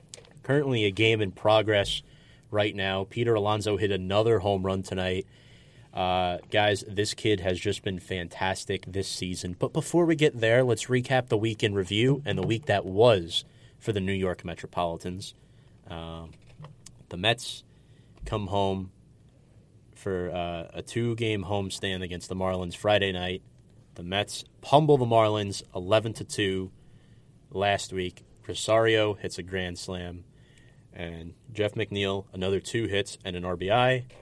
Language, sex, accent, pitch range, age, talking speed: English, male, American, 95-120 Hz, 30-49, 145 wpm